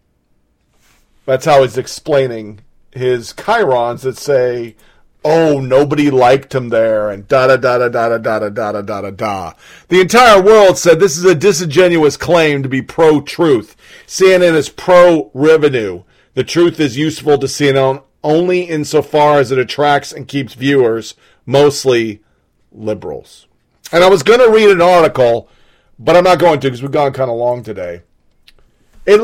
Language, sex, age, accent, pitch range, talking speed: English, male, 40-59, American, 125-170 Hz, 155 wpm